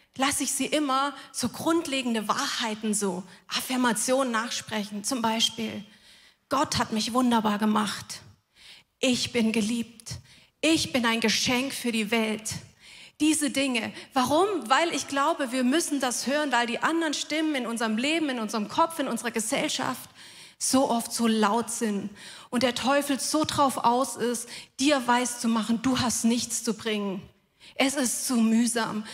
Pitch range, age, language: 235-305 Hz, 30-49, German